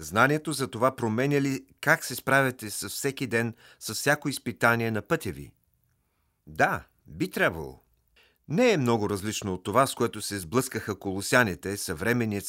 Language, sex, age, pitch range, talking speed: Bulgarian, male, 40-59, 105-135 Hz, 155 wpm